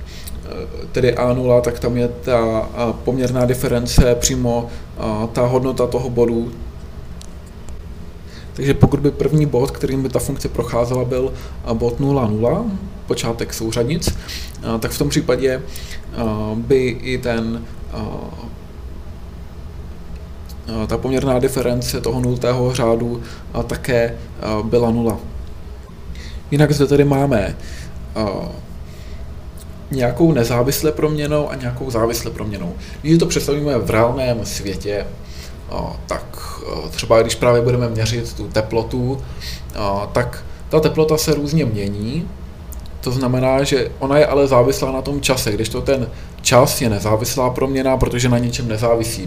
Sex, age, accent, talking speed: male, 20-39, native, 130 wpm